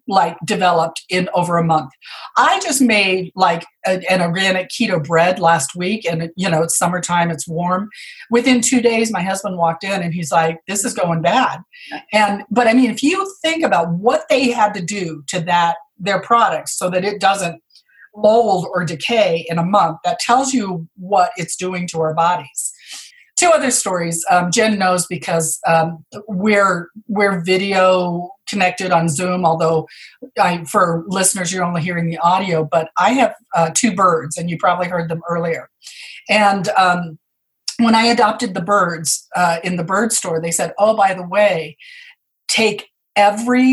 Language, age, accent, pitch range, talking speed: English, 40-59, American, 170-215 Hz, 175 wpm